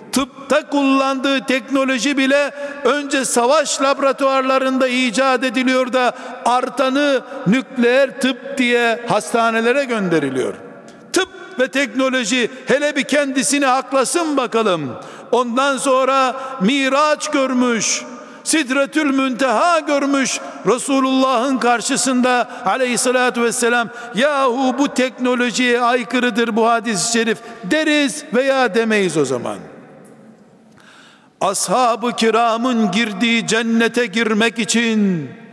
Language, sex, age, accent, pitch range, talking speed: Turkish, male, 60-79, native, 230-265 Hz, 90 wpm